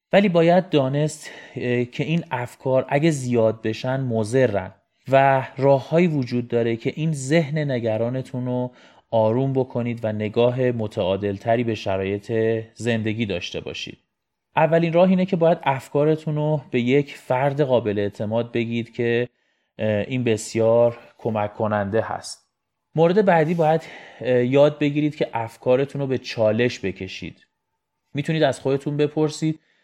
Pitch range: 115-155 Hz